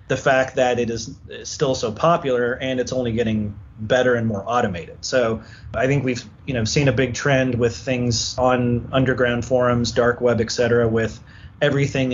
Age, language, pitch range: 30-49, English, 110-130 Hz